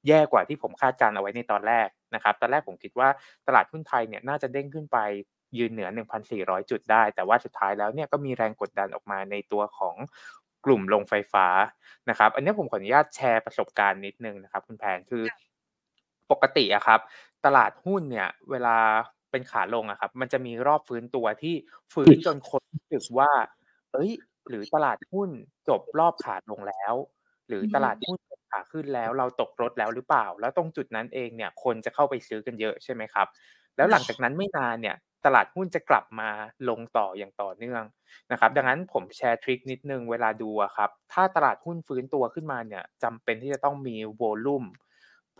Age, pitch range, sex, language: 20-39, 110-145 Hz, male, Thai